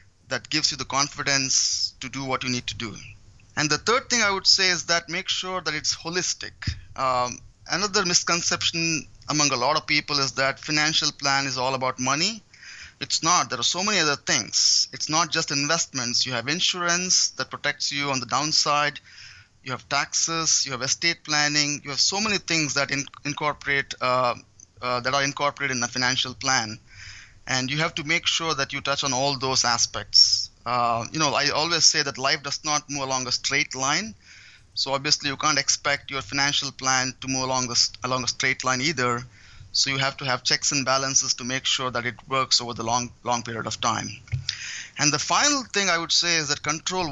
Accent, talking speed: Indian, 205 wpm